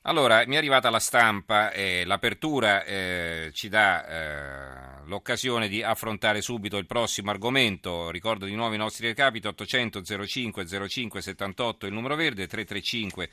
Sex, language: male, Italian